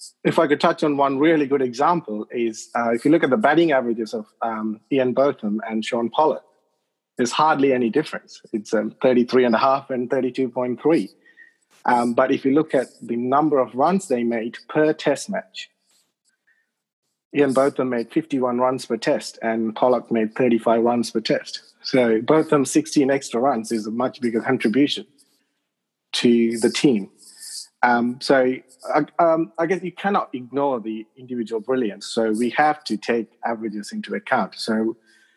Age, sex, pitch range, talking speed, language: 30-49, male, 120-150 Hz, 165 wpm, English